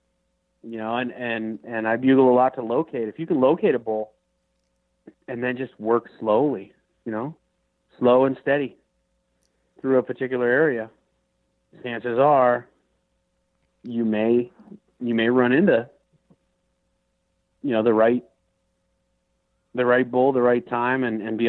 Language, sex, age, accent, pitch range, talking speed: English, male, 40-59, American, 105-130 Hz, 145 wpm